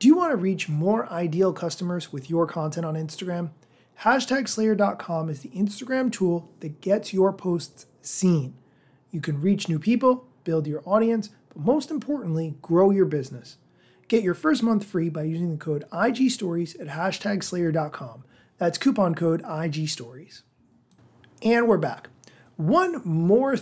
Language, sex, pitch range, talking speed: English, male, 155-215 Hz, 145 wpm